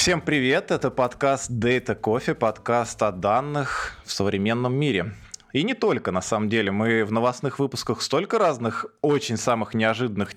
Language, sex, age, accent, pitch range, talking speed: Russian, male, 20-39, native, 100-125 Hz, 155 wpm